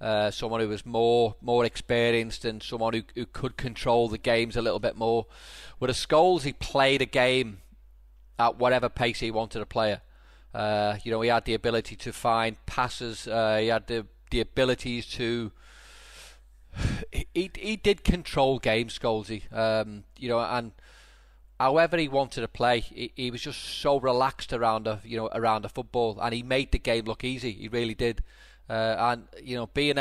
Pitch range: 110-120 Hz